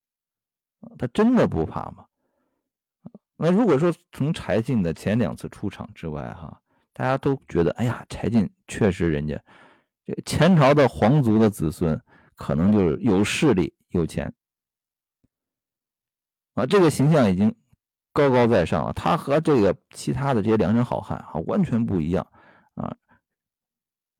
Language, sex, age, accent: Chinese, male, 50-69, native